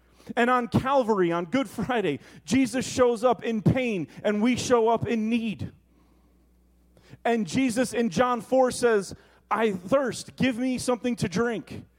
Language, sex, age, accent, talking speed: English, male, 30-49, American, 150 wpm